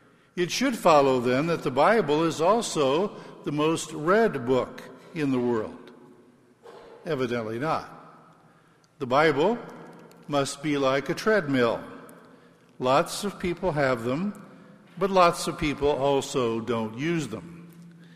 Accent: American